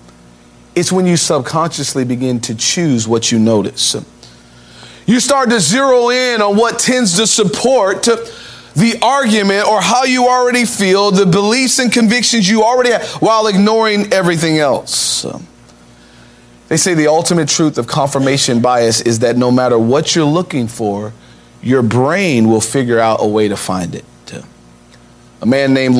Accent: American